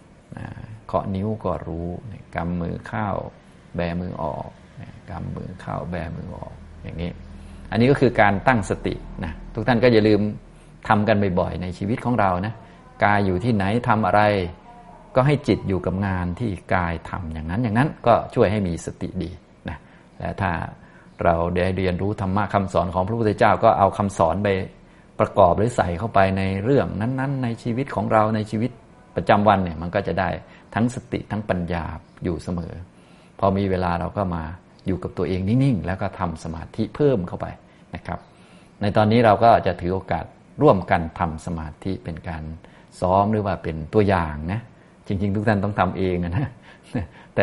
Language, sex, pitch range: Thai, male, 90-110 Hz